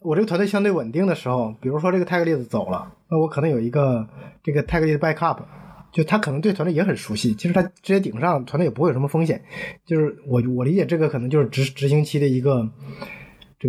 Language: Chinese